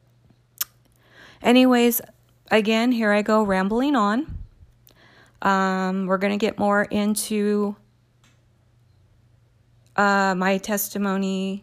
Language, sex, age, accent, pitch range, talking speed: English, female, 30-49, American, 175-210 Hz, 90 wpm